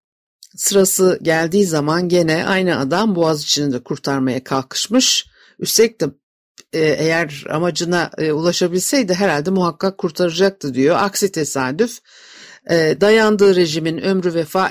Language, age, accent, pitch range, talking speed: Turkish, 60-79, native, 160-210 Hz, 105 wpm